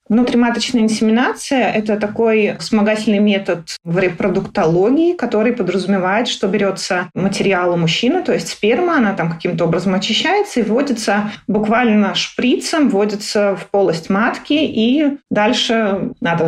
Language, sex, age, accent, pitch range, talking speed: Russian, female, 30-49, native, 185-240 Hz, 125 wpm